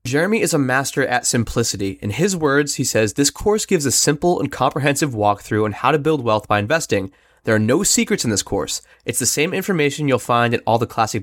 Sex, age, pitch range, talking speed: male, 20-39, 115-160 Hz, 230 wpm